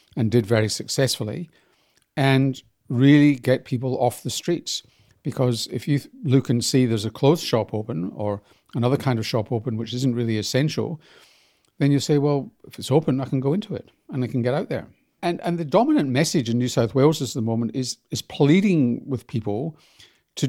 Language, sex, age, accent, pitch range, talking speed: English, male, 50-69, British, 115-145 Hz, 200 wpm